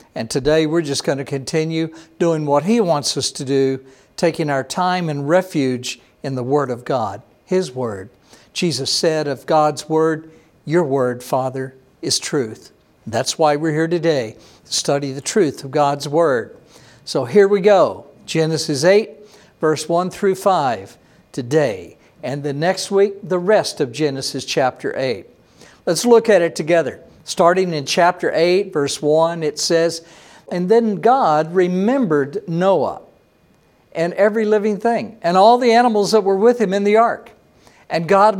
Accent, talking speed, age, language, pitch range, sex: American, 165 wpm, 60-79, English, 150-195 Hz, male